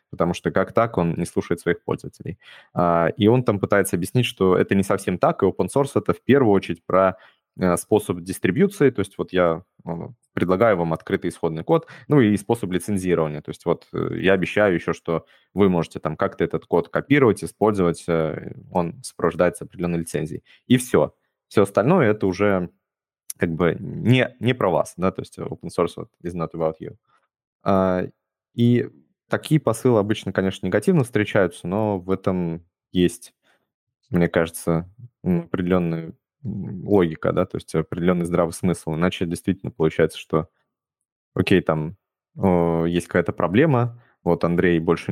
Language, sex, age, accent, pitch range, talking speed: Russian, male, 20-39, native, 85-105 Hz, 155 wpm